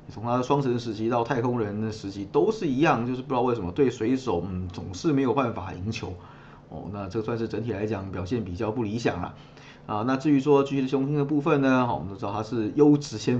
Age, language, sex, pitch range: 20-39, Chinese, male, 110-145 Hz